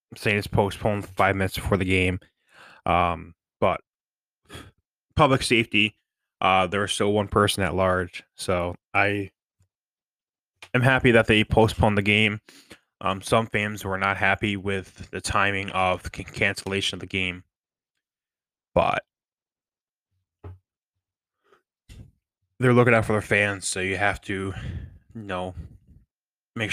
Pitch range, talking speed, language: 90-105 Hz, 130 wpm, English